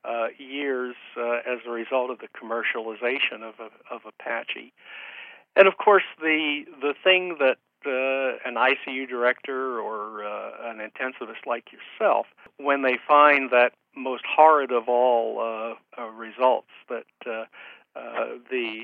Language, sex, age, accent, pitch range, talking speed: English, male, 60-79, American, 115-145 Hz, 145 wpm